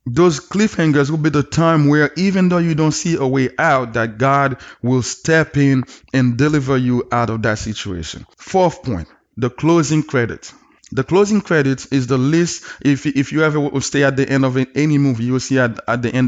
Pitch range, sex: 125-160 Hz, male